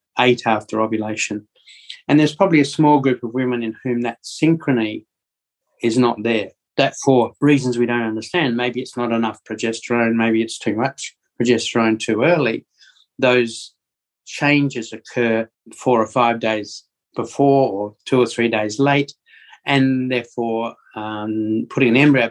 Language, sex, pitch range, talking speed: English, male, 110-125 Hz, 150 wpm